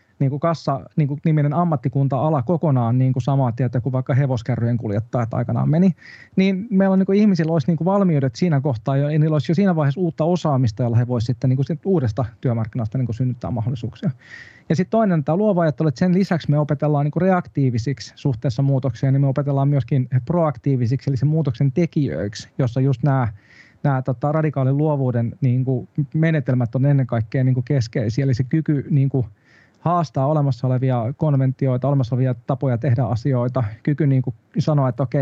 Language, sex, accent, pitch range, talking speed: Finnish, male, native, 125-150 Hz, 170 wpm